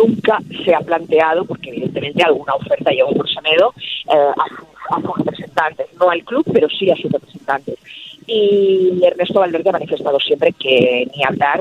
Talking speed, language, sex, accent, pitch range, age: 175 wpm, Spanish, female, Spanish, 170-225 Hz, 30-49